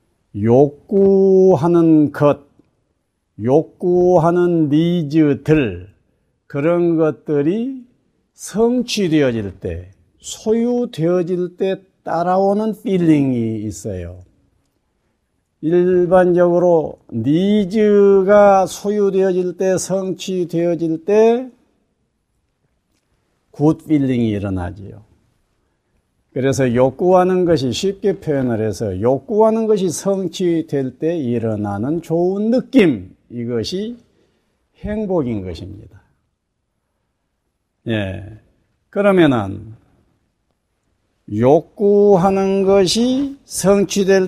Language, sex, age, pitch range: Korean, male, 50-69, 120-195 Hz